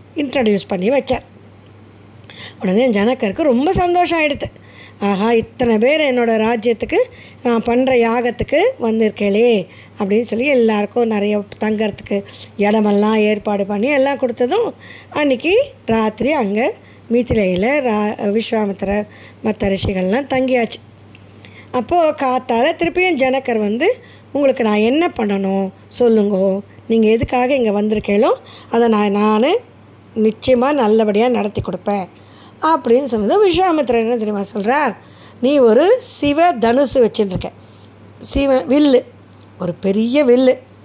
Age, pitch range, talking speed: 20-39, 210-270 Hz, 110 wpm